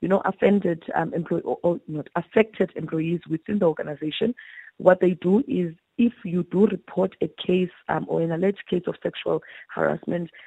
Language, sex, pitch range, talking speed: English, female, 165-200 Hz, 170 wpm